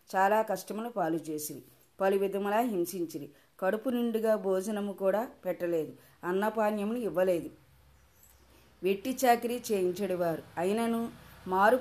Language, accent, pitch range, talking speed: Telugu, native, 175-215 Hz, 95 wpm